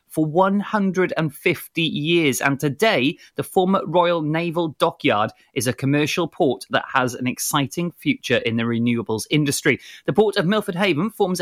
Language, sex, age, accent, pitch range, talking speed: English, male, 30-49, British, 135-180 Hz, 150 wpm